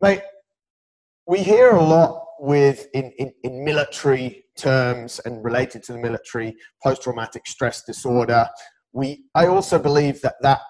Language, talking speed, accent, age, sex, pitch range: English, 140 wpm, British, 30-49, male, 120-145 Hz